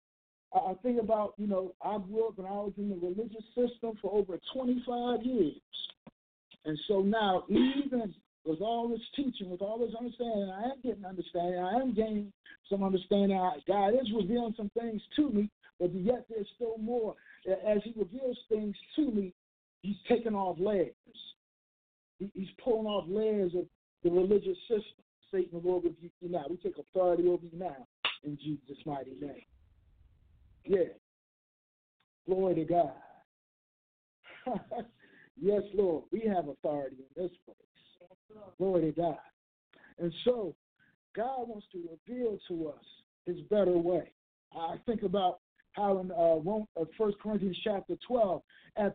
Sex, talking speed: male, 150 wpm